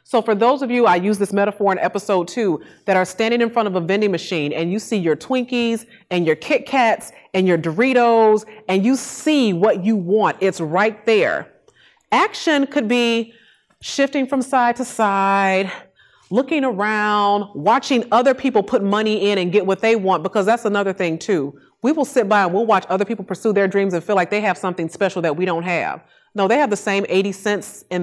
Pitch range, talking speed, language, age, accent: 180-230 Hz, 210 wpm, English, 30-49, American